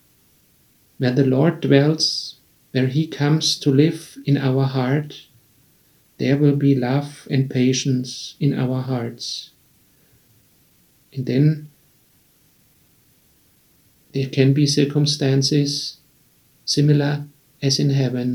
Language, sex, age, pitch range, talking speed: English, male, 50-69, 130-145 Hz, 100 wpm